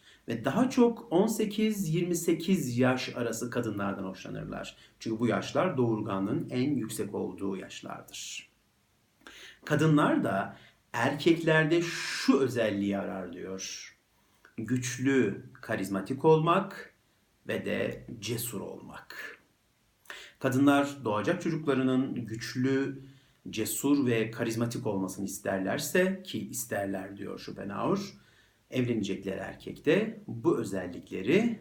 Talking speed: 90 wpm